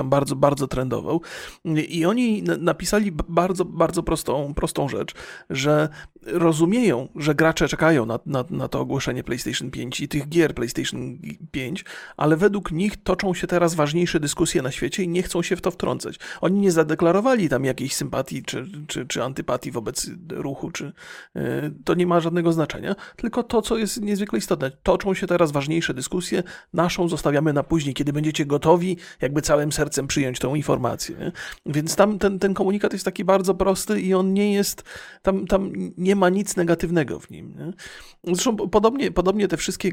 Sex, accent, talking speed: male, native, 170 wpm